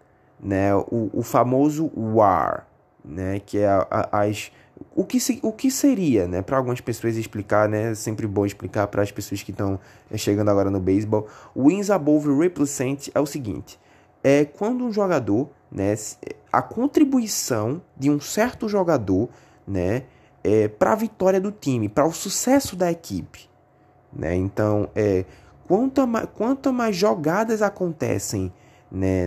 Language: Portuguese